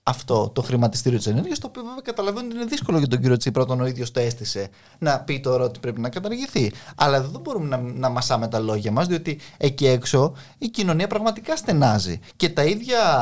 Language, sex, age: Greek, male, 20-39